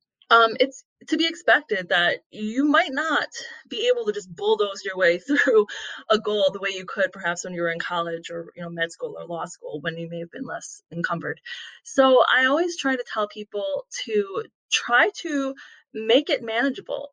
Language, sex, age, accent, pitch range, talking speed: English, female, 20-39, American, 180-275 Hz, 200 wpm